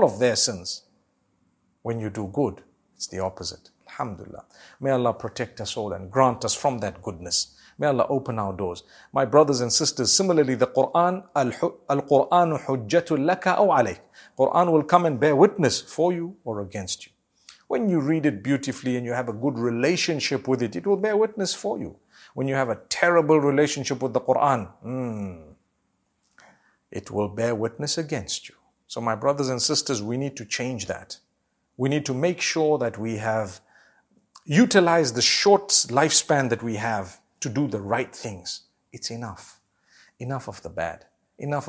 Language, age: English, 50-69